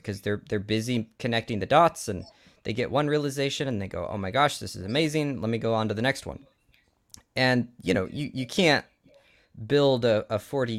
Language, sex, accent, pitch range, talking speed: English, male, American, 110-150 Hz, 215 wpm